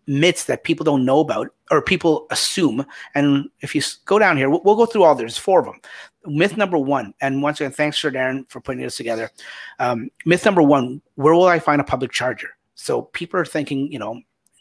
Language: English